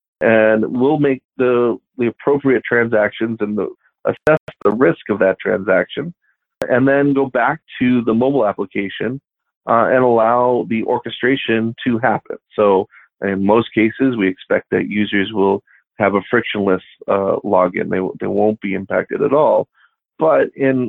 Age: 40-59